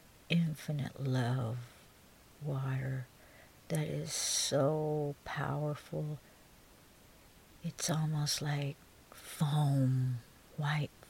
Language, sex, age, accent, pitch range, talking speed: English, female, 60-79, American, 125-160 Hz, 65 wpm